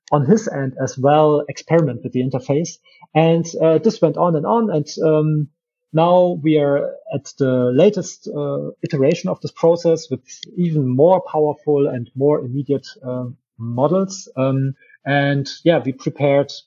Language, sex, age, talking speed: Bulgarian, male, 30-49, 155 wpm